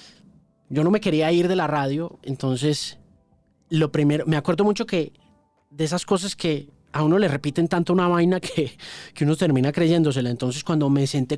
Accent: Colombian